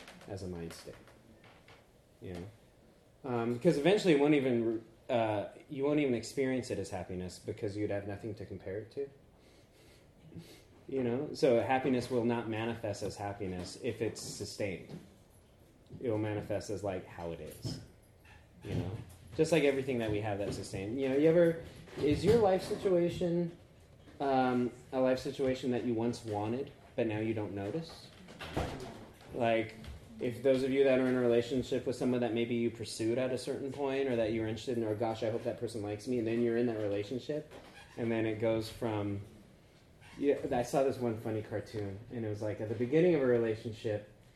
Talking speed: 190 wpm